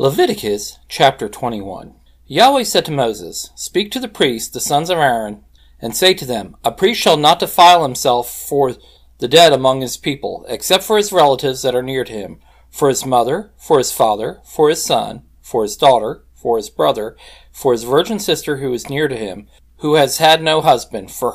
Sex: male